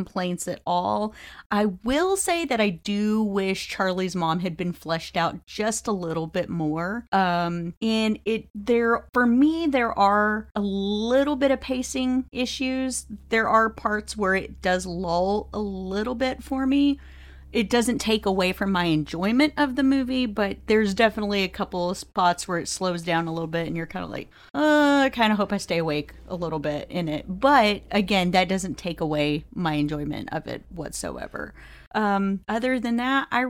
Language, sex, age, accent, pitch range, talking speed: English, female, 30-49, American, 175-225 Hz, 190 wpm